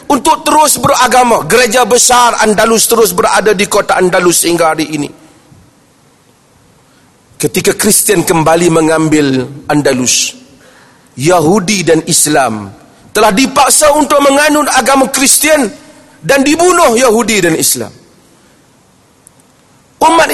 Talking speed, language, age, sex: 100 wpm, Malay, 40-59, male